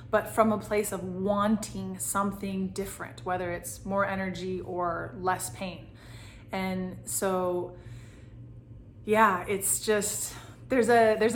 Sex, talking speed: female, 120 wpm